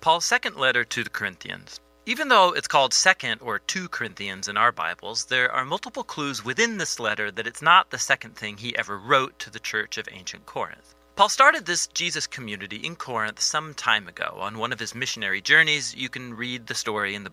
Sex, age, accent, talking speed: male, 30-49, American, 215 wpm